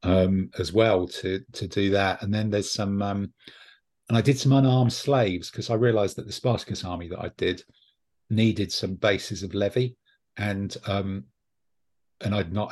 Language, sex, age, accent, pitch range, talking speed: English, male, 50-69, British, 95-110 Hz, 180 wpm